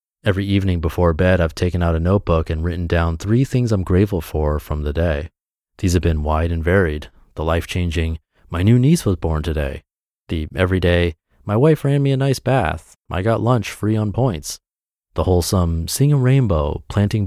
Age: 30-49